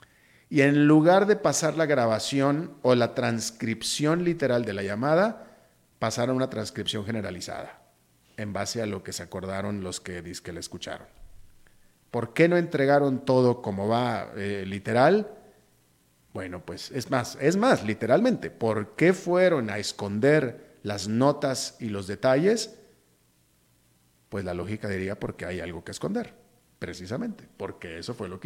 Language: Spanish